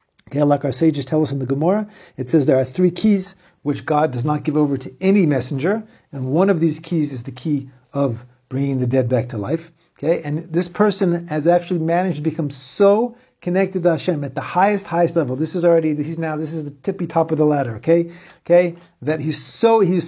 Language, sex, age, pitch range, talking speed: English, male, 50-69, 140-175 Hz, 230 wpm